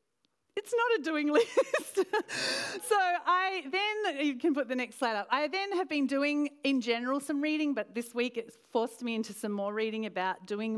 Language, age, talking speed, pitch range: English, 40-59, 200 wpm, 190-245 Hz